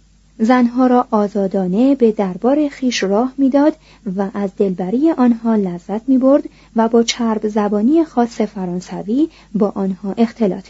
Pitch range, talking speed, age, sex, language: 195-255 Hz, 135 wpm, 30-49, female, Persian